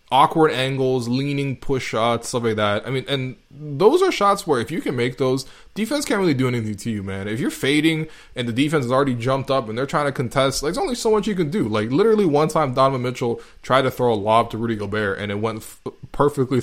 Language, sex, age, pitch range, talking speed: English, male, 20-39, 105-130 Hz, 255 wpm